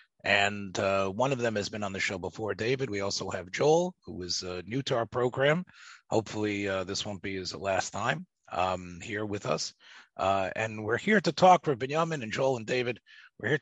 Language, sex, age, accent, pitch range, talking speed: English, male, 30-49, American, 100-140 Hz, 215 wpm